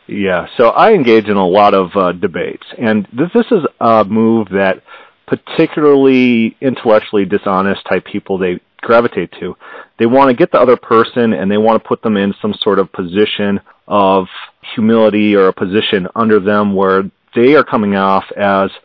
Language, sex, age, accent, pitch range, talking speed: English, male, 40-59, American, 95-115 Hz, 180 wpm